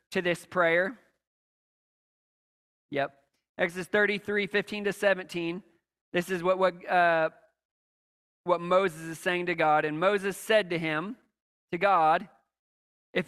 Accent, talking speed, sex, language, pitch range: American, 130 wpm, male, English, 170-200 Hz